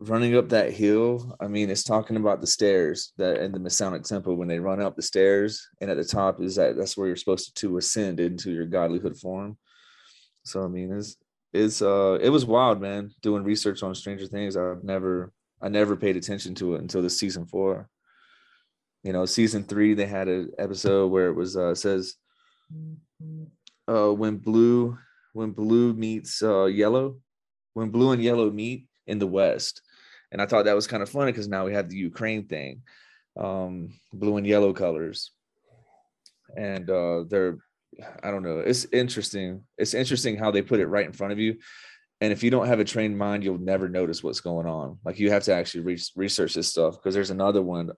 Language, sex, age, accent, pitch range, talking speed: English, male, 30-49, American, 95-110 Hz, 200 wpm